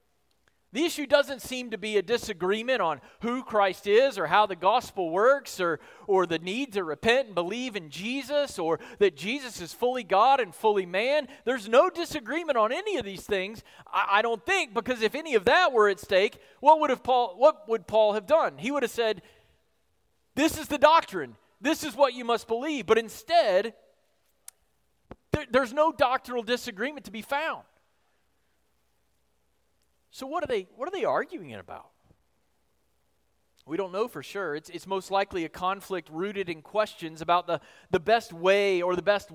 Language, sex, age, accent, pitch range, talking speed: English, male, 40-59, American, 200-275 Hz, 180 wpm